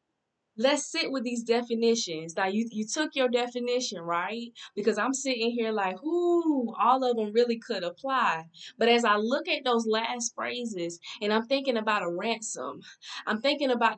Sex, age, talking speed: female, 20-39, 175 wpm